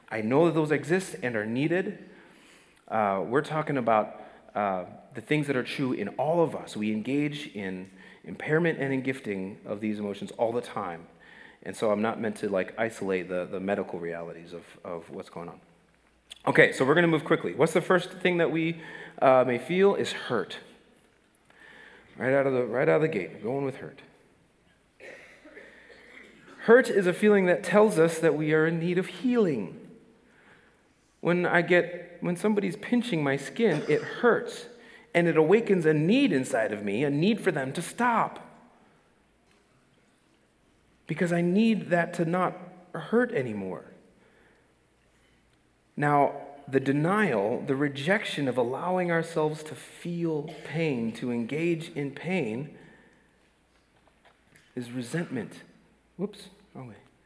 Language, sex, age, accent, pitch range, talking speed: English, male, 30-49, American, 135-185 Hz, 155 wpm